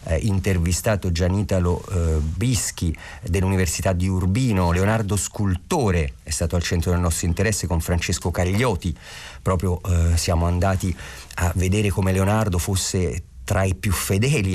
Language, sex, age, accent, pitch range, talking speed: Italian, male, 40-59, native, 85-105 Hz, 135 wpm